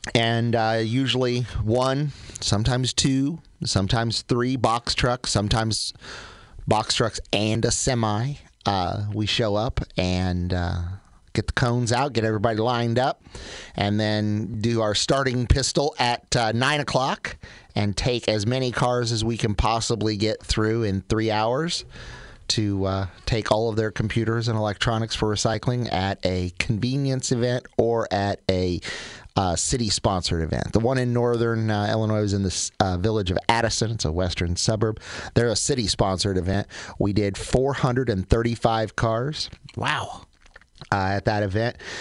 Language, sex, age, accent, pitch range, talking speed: English, male, 30-49, American, 95-120 Hz, 155 wpm